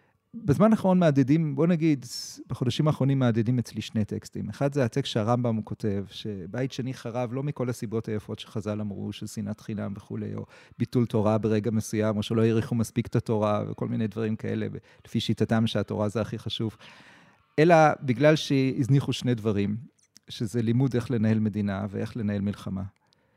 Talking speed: 160 wpm